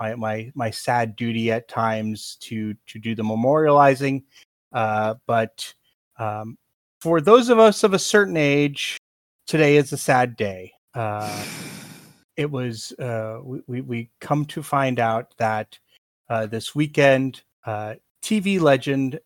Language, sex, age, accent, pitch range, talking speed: English, male, 30-49, American, 115-155 Hz, 140 wpm